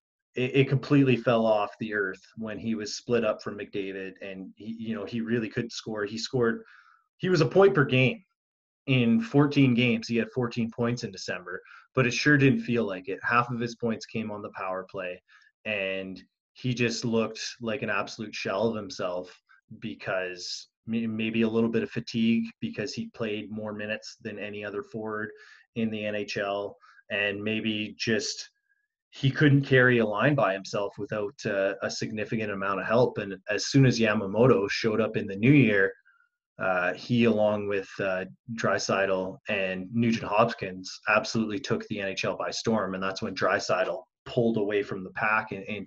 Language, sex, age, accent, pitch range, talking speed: English, male, 30-49, American, 100-120 Hz, 180 wpm